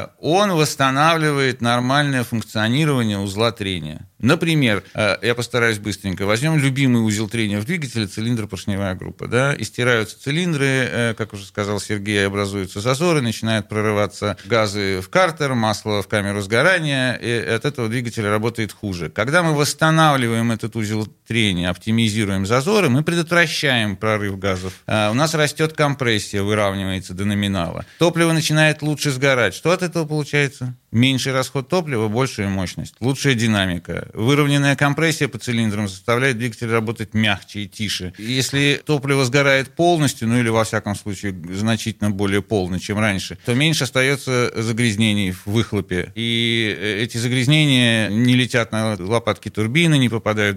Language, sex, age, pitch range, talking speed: Russian, male, 40-59, 105-135 Hz, 140 wpm